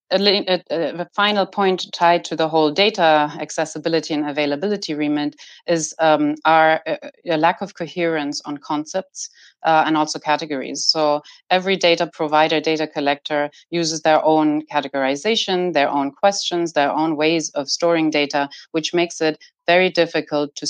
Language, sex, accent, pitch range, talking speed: English, female, German, 150-175 Hz, 140 wpm